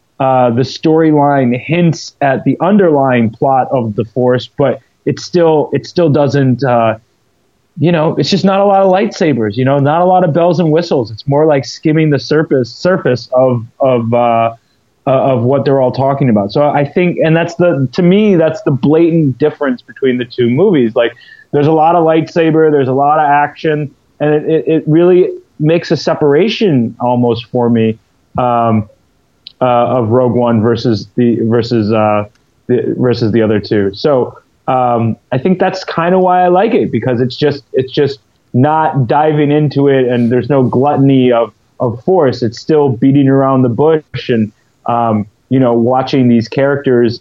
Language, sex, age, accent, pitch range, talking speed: English, male, 30-49, American, 120-150 Hz, 180 wpm